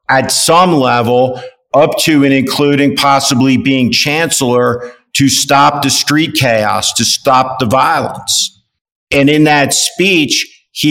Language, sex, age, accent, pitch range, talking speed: English, male, 50-69, American, 130-150 Hz, 130 wpm